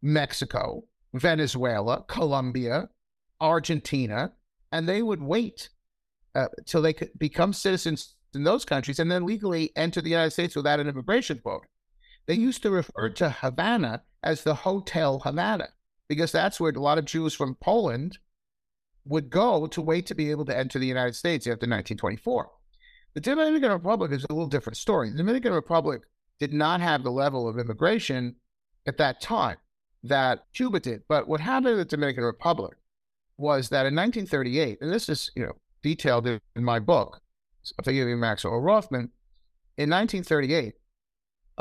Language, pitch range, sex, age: English, 120-170 Hz, male, 50-69